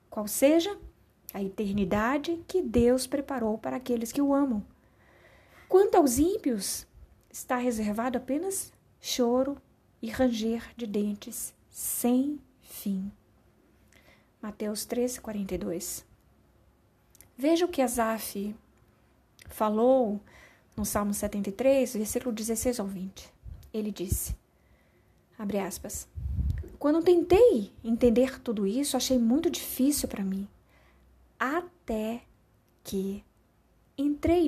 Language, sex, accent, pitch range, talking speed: Portuguese, female, Brazilian, 215-295 Hz, 100 wpm